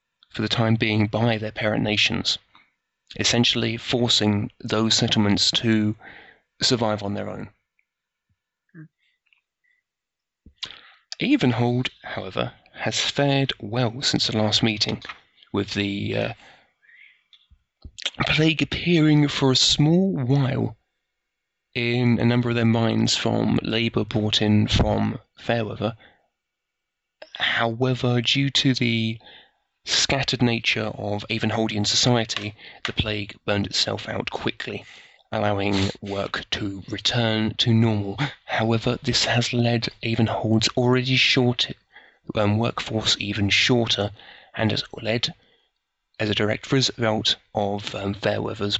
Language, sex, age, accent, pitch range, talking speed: English, male, 30-49, British, 105-125 Hz, 110 wpm